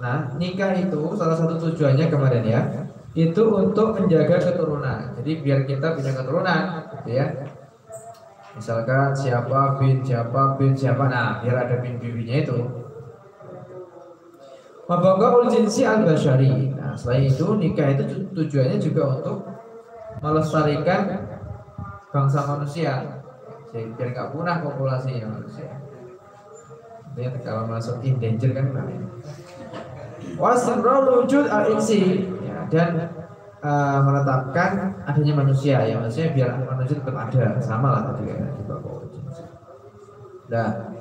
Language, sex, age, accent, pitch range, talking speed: Indonesian, male, 20-39, native, 130-175 Hz, 105 wpm